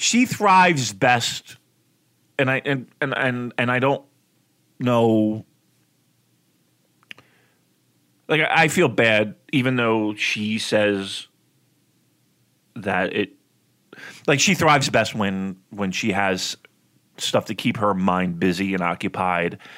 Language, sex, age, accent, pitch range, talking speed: English, male, 30-49, American, 105-135 Hz, 120 wpm